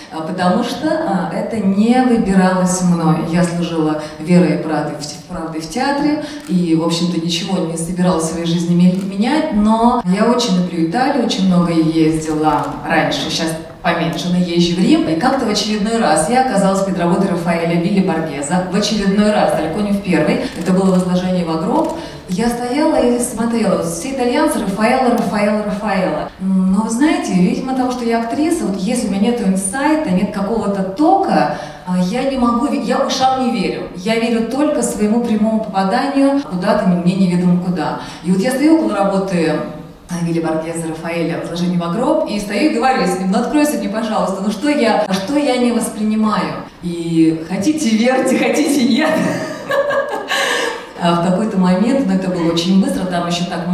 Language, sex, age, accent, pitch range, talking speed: Russian, female, 30-49, native, 170-240 Hz, 165 wpm